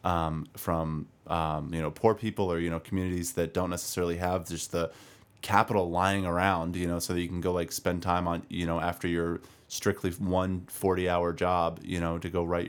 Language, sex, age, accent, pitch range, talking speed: English, male, 20-39, American, 85-100 Hz, 215 wpm